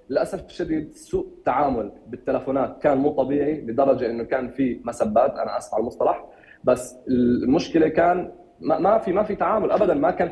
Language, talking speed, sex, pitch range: Arabic, 165 wpm, male, 150-210 Hz